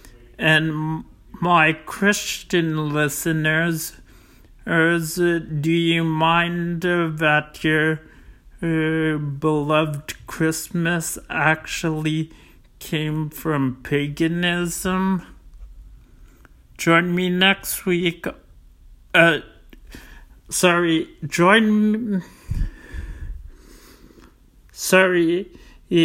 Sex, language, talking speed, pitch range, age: male, English, 55 wpm, 140-170 Hz, 50-69